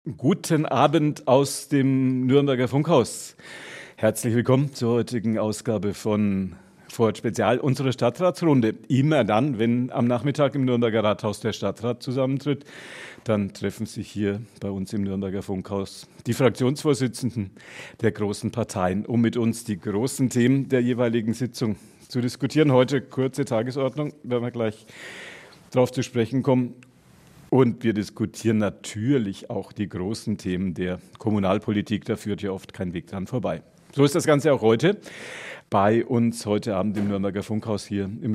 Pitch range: 105-130 Hz